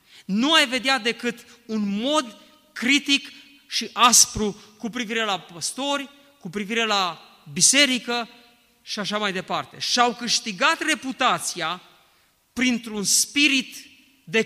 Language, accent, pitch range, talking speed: Romanian, native, 205-255 Hz, 115 wpm